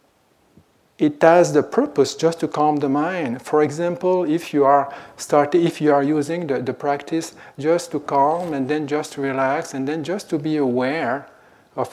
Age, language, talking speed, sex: 40-59, English, 185 wpm, male